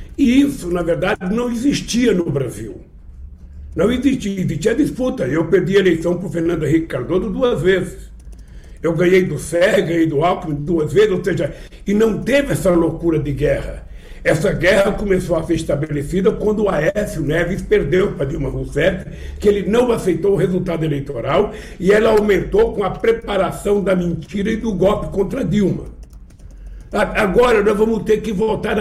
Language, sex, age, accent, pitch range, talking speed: Portuguese, male, 60-79, Brazilian, 155-205 Hz, 170 wpm